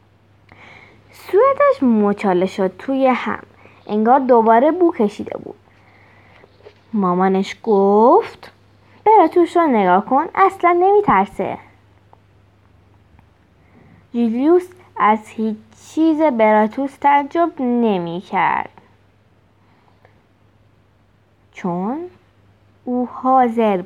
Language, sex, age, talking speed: Persian, female, 20-39, 70 wpm